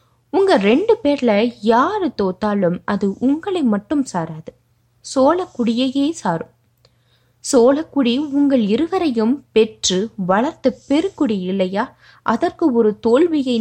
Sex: female